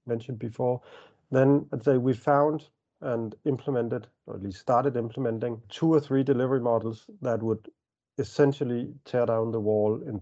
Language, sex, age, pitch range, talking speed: English, male, 50-69, 100-125 Hz, 160 wpm